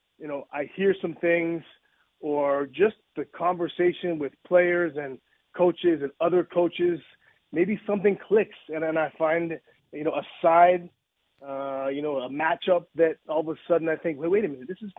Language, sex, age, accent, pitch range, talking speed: English, male, 30-49, American, 140-175 Hz, 185 wpm